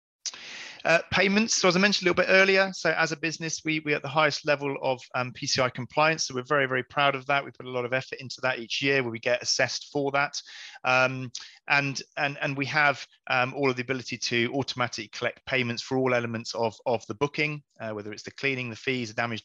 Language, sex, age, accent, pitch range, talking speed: English, male, 30-49, British, 110-140 Hz, 240 wpm